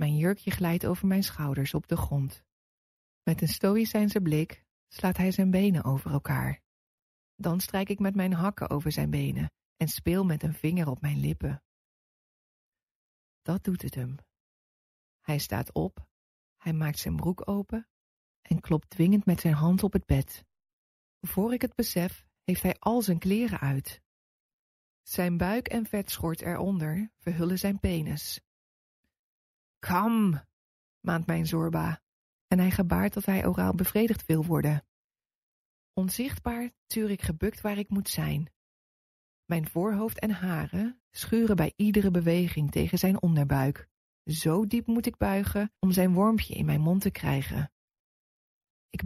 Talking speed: 150 wpm